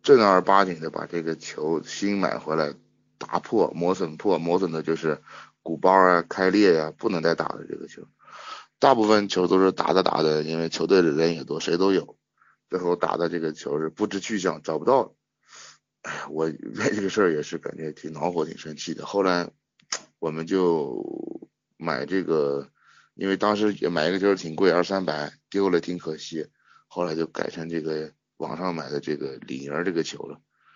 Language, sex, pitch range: Chinese, male, 80-100 Hz